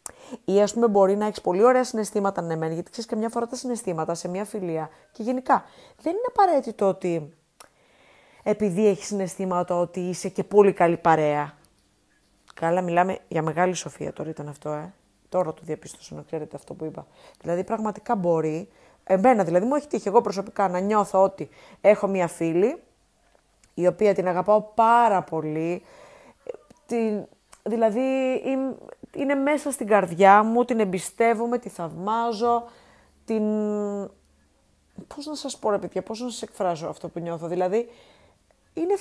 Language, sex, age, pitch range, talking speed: Greek, female, 30-49, 180-250 Hz, 155 wpm